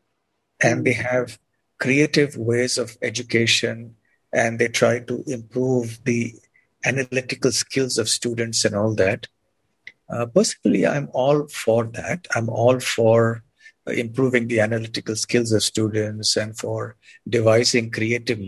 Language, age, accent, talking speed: English, 50-69, Indian, 125 wpm